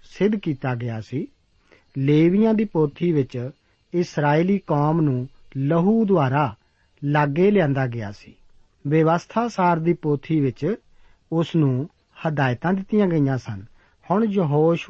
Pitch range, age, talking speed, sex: 135-185 Hz, 50-69, 120 wpm, male